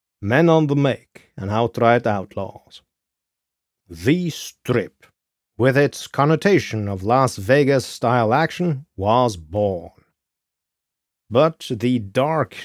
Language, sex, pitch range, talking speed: English, male, 100-135 Hz, 100 wpm